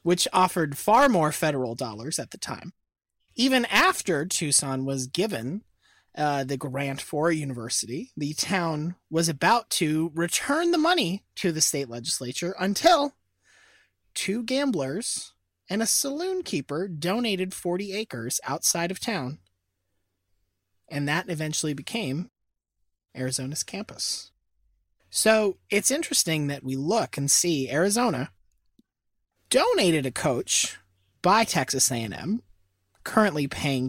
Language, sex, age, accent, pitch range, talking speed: English, male, 30-49, American, 120-185 Hz, 120 wpm